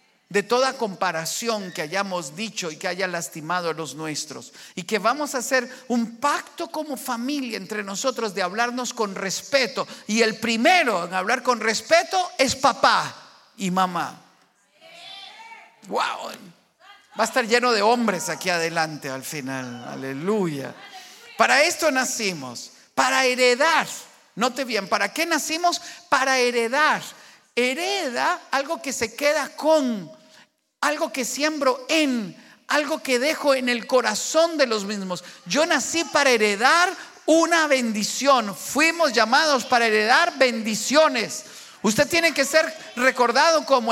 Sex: male